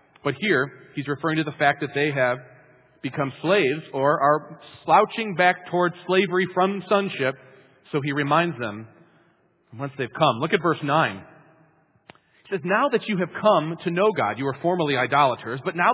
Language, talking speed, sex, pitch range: English, 175 wpm, male, 155-200 Hz